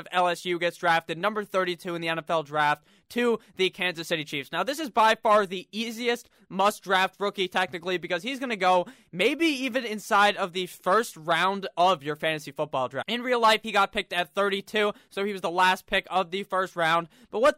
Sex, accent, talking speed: male, American, 210 wpm